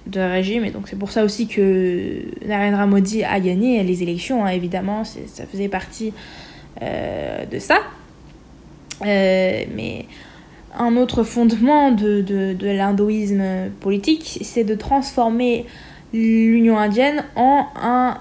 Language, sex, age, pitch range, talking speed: French, female, 20-39, 200-240 Hz, 135 wpm